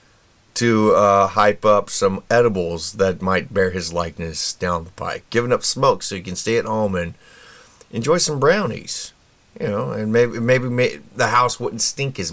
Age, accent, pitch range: 30-49, American, 95-120 Hz